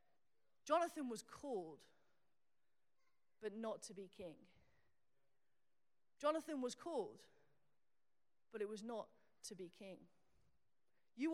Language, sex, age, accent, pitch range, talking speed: English, female, 30-49, British, 195-250 Hz, 100 wpm